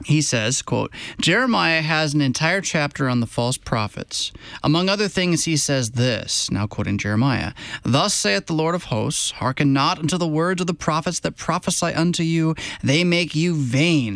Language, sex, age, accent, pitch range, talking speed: English, male, 20-39, American, 125-170 Hz, 180 wpm